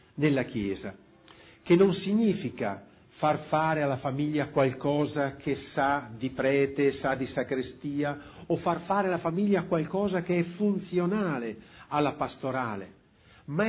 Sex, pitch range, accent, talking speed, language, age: male, 150-205 Hz, native, 125 wpm, Italian, 50-69